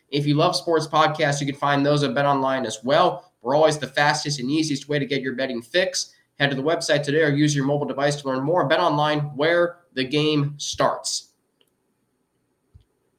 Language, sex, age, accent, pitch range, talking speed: English, male, 20-39, American, 145-180 Hz, 195 wpm